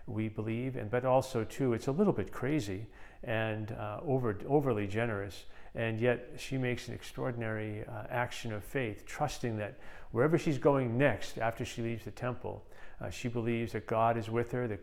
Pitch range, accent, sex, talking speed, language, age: 110-125 Hz, American, male, 185 wpm, English, 40-59